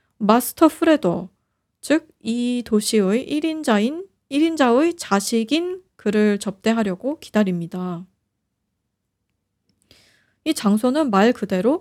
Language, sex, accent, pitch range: Korean, female, native, 175-290 Hz